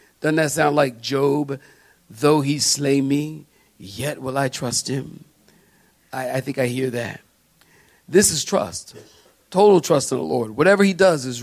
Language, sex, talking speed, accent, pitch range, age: English, male, 170 wpm, American, 140-175 Hz, 40-59